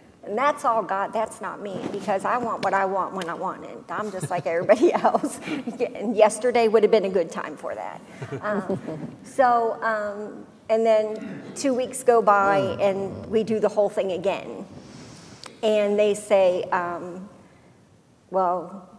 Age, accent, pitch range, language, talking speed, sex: 50-69, American, 195-235 Hz, English, 170 wpm, female